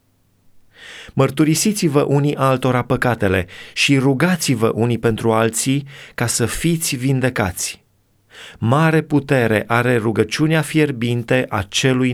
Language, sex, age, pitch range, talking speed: Romanian, male, 30-49, 105-150 Hz, 100 wpm